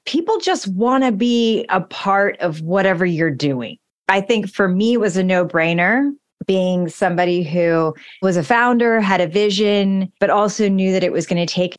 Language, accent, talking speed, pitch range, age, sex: English, American, 185 wpm, 165-205 Hz, 30-49, female